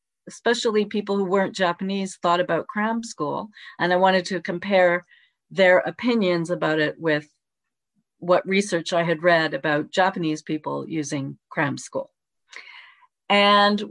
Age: 40-59